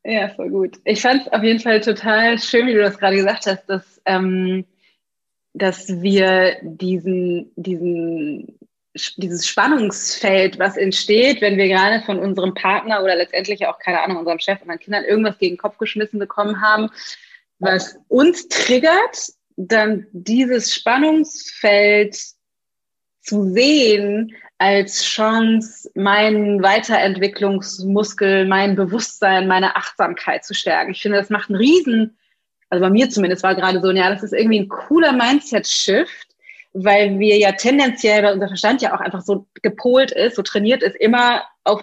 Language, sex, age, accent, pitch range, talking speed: German, female, 30-49, German, 195-240 Hz, 150 wpm